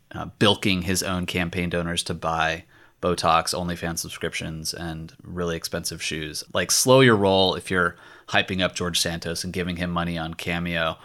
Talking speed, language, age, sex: 175 wpm, English, 30-49, male